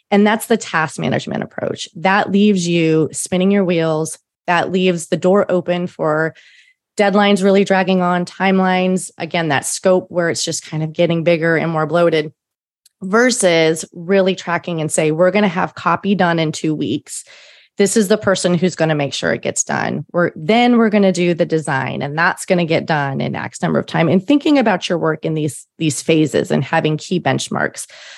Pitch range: 160-200 Hz